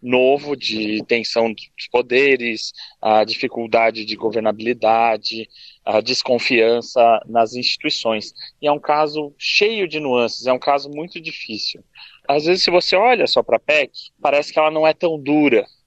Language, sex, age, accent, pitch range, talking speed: Portuguese, male, 20-39, Brazilian, 125-170 Hz, 155 wpm